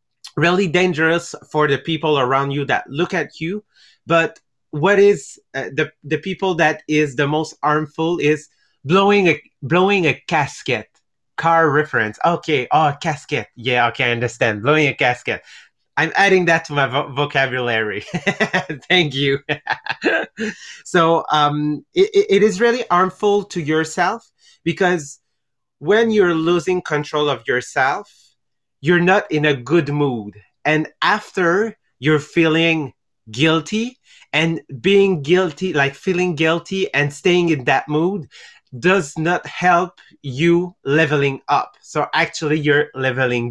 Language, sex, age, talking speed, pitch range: English, male, 30-49, 135 wpm, 145-180 Hz